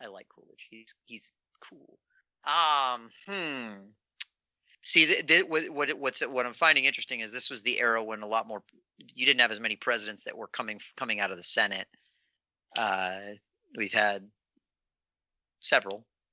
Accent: American